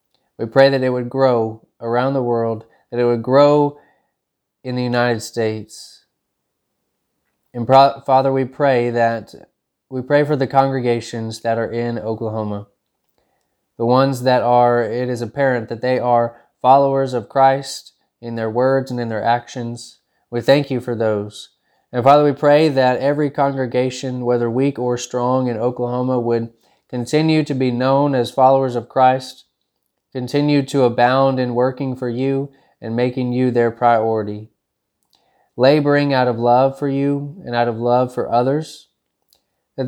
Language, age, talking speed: English, 20-39, 150 wpm